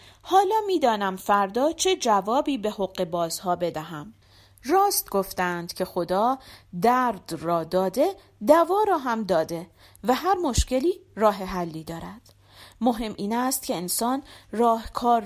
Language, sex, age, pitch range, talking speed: Persian, female, 40-59, 185-305 Hz, 130 wpm